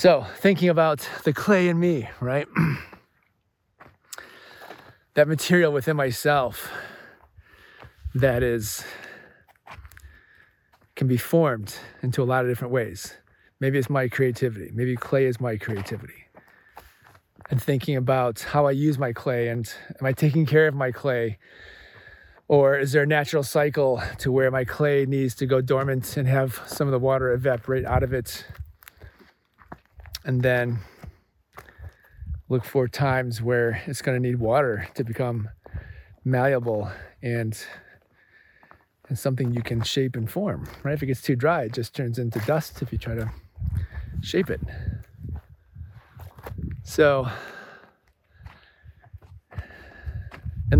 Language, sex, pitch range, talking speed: English, male, 115-140 Hz, 135 wpm